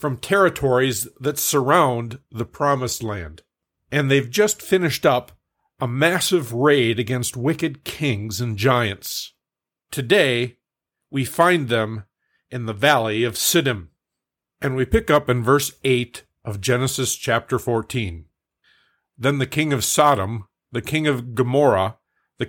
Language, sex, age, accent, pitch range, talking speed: English, male, 50-69, American, 110-145 Hz, 135 wpm